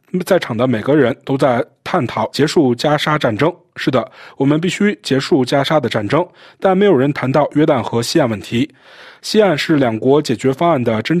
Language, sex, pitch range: Chinese, male, 125-165 Hz